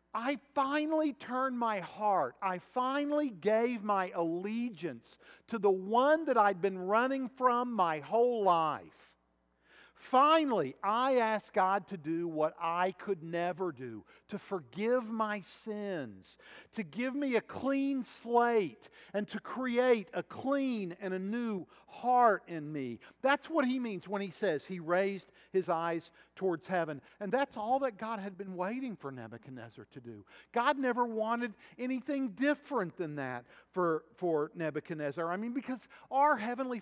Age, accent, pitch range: 50-69, American, 155-240 Hz